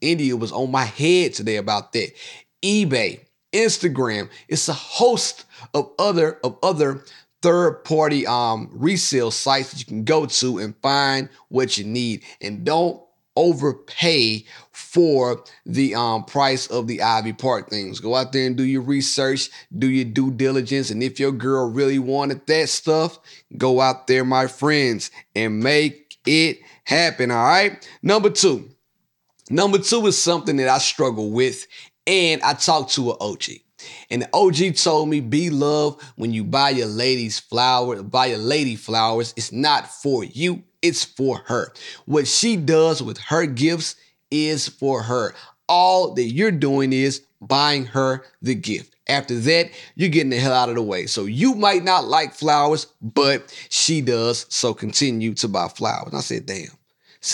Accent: American